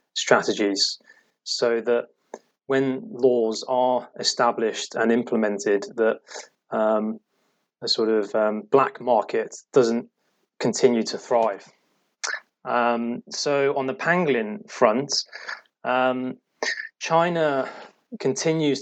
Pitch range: 115-135 Hz